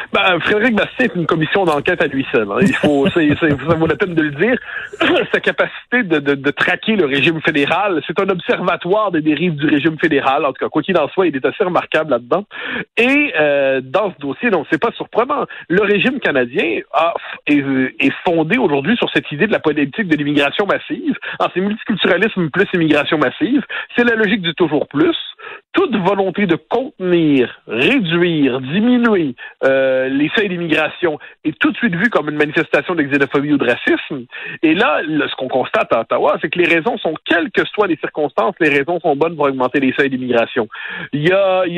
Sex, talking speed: male, 205 wpm